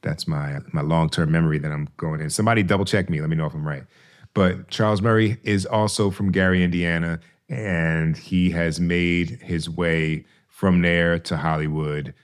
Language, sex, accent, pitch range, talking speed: English, male, American, 80-100 Hz, 175 wpm